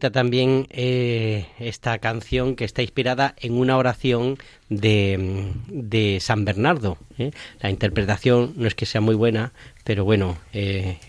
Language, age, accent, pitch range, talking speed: Spanish, 40-59, Spanish, 105-130 Hz, 135 wpm